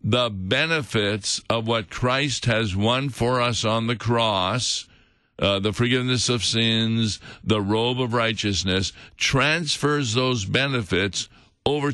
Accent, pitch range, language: American, 105-125 Hz, English